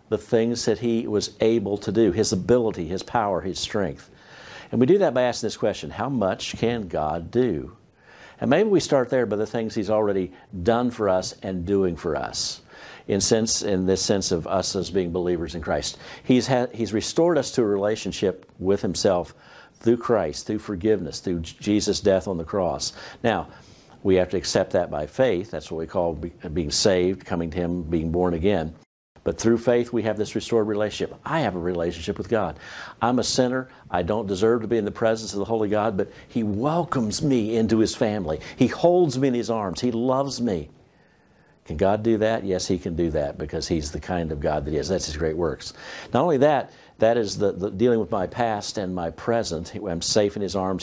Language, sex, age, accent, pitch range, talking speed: English, male, 50-69, American, 90-115 Hz, 215 wpm